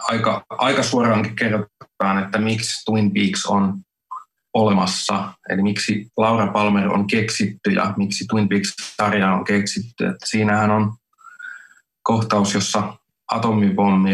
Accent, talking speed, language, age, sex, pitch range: native, 120 wpm, Finnish, 20-39, male, 100-110 Hz